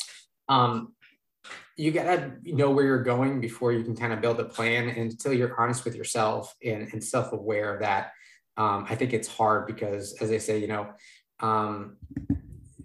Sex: male